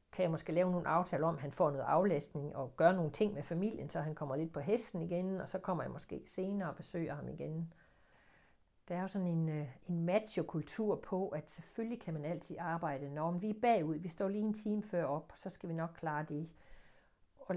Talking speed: 230 wpm